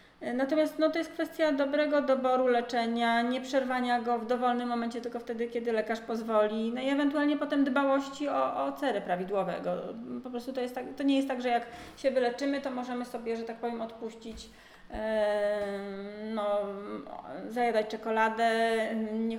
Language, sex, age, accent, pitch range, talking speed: Polish, female, 30-49, native, 225-270 Hz, 150 wpm